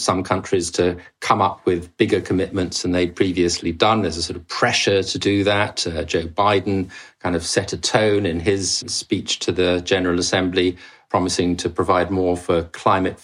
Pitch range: 85-95 Hz